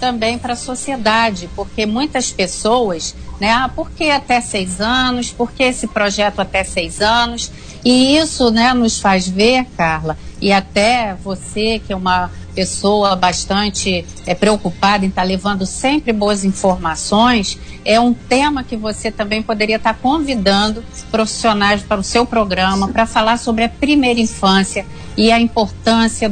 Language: Portuguese